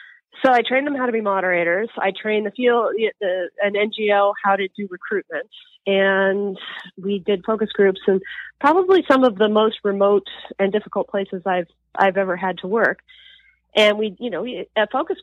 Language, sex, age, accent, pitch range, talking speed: English, female, 30-49, American, 190-235 Hz, 190 wpm